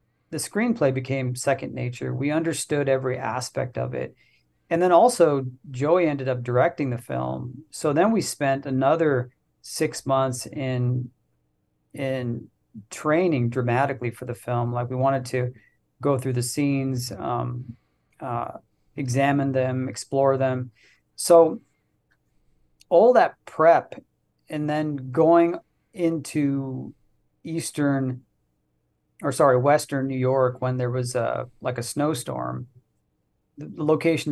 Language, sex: English, male